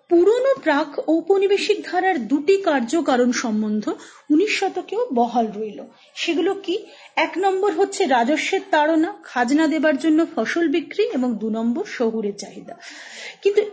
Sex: female